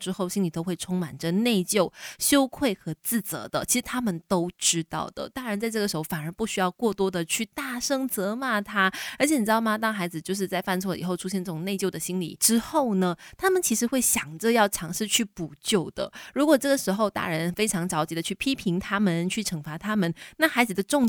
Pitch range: 175-225 Hz